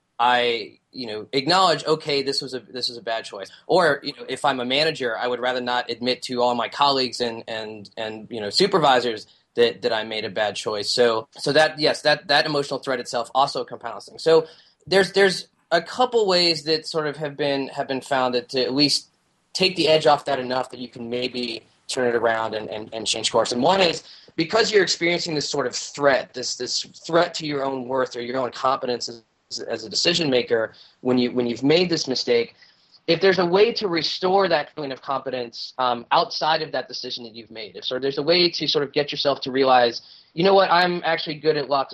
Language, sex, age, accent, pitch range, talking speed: English, male, 20-39, American, 125-160 Hz, 230 wpm